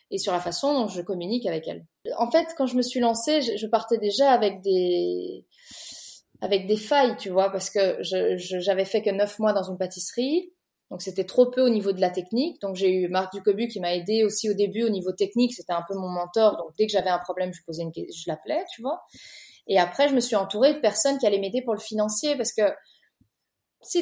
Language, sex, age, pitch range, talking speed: French, female, 20-39, 185-255 Hz, 240 wpm